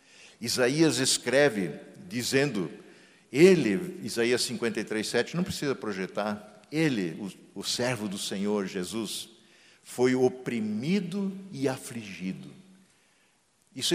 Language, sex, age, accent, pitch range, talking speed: Portuguese, male, 60-79, Brazilian, 110-165 Hz, 90 wpm